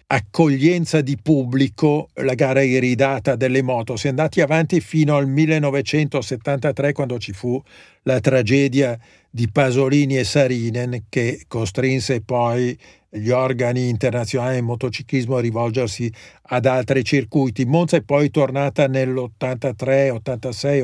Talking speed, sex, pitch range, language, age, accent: 125 wpm, male, 130-155 Hz, Italian, 50-69, native